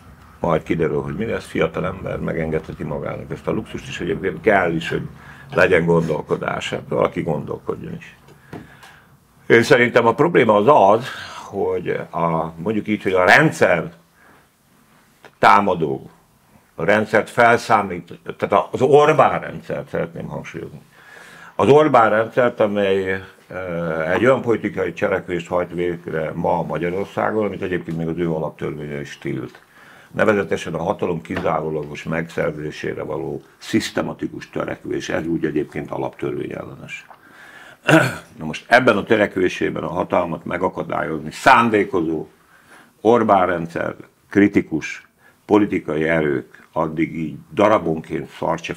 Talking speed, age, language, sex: 115 wpm, 60-79, Hungarian, male